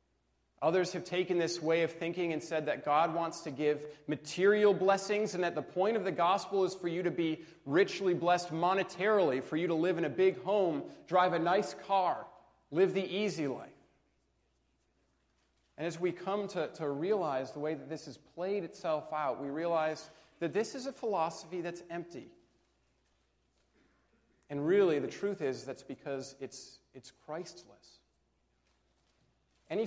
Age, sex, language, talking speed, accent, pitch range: 40-59, male, English, 165 wpm, American, 130-185 Hz